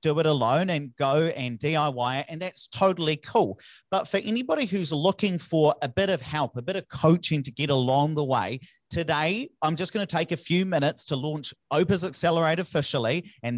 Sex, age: male, 30-49